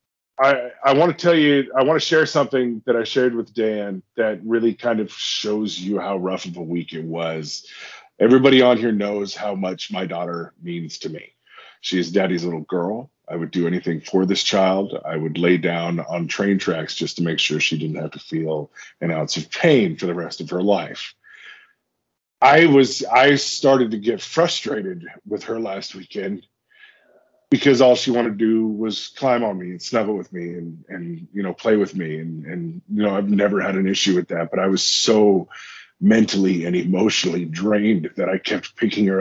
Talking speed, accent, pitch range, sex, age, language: 200 wpm, American, 90-125 Hz, male, 40-59, English